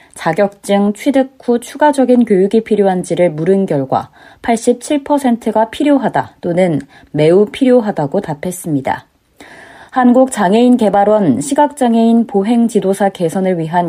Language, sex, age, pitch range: Korean, female, 20-39, 175-245 Hz